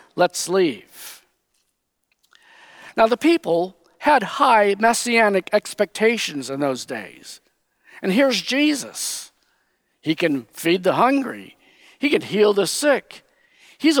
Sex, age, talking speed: male, 50-69, 110 wpm